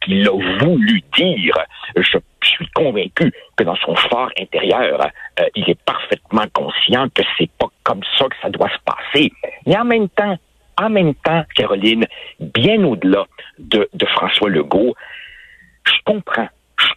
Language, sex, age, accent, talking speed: French, male, 60-79, French, 155 wpm